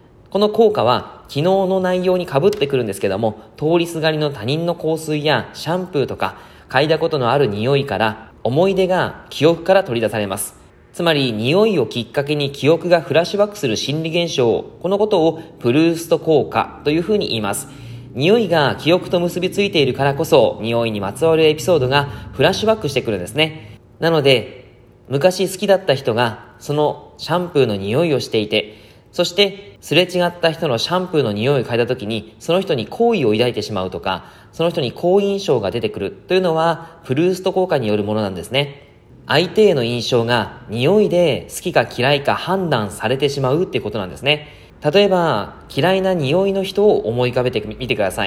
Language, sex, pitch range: Japanese, male, 120-180 Hz